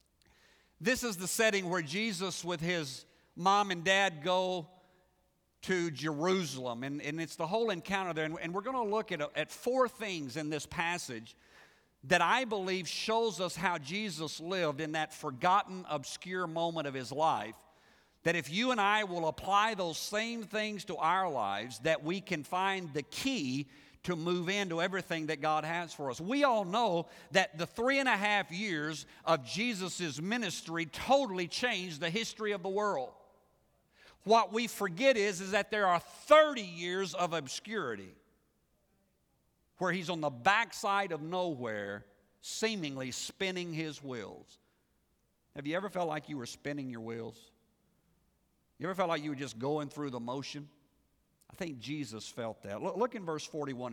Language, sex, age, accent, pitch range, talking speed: English, male, 50-69, American, 145-195 Hz, 170 wpm